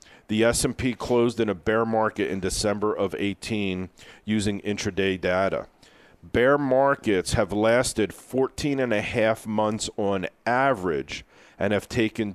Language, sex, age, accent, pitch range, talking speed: English, male, 40-59, American, 95-120 Hz, 135 wpm